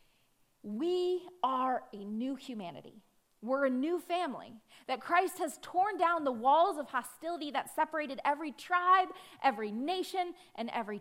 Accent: American